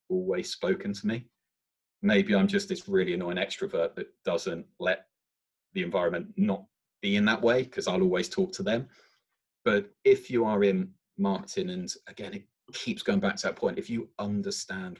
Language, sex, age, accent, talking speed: English, male, 30-49, British, 180 wpm